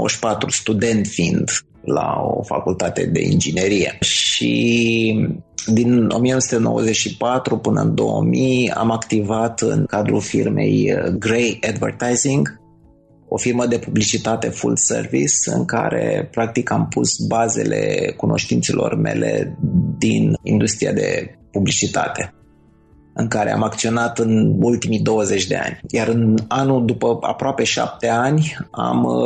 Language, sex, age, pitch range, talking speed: Romanian, male, 20-39, 105-120 Hz, 115 wpm